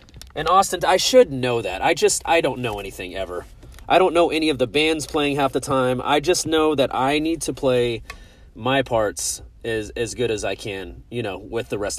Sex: male